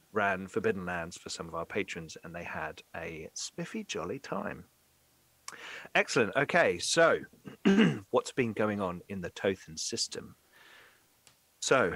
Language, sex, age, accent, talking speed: English, male, 40-59, British, 135 wpm